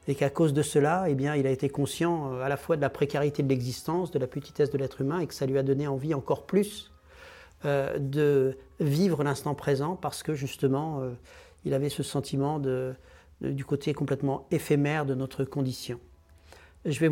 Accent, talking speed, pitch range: French, 205 wpm, 135-155 Hz